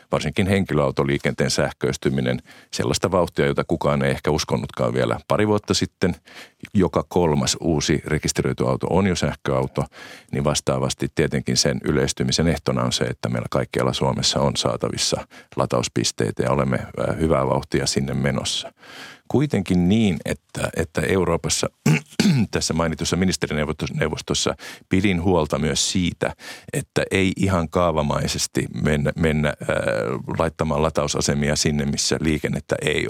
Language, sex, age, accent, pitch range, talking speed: Finnish, male, 50-69, native, 70-85 Hz, 125 wpm